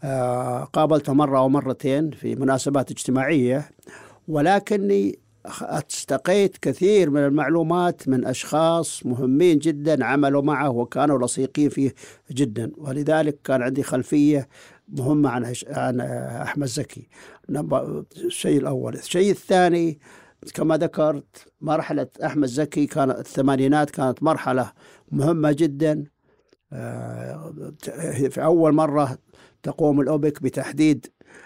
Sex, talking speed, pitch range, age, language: male, 105 wpm, 130-155 Hz, 50-69, Arabic